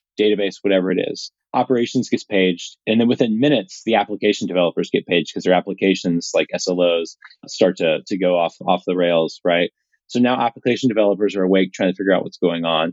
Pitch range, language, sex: 95-120 Hz, English, male